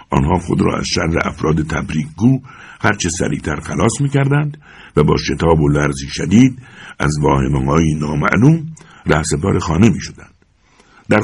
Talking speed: 140 wpm